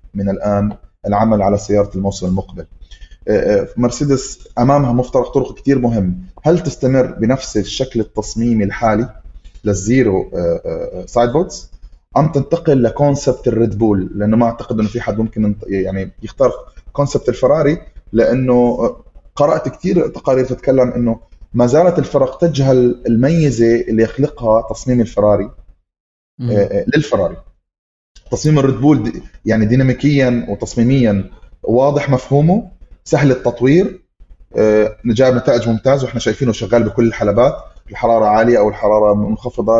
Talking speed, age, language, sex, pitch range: 115 wpm, 20-39, Arabic, male, 105-135 Hz